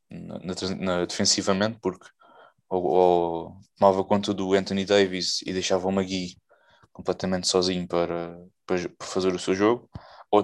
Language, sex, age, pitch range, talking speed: Portuguese, male, 20-39, 90-100 Hz, 150 wpm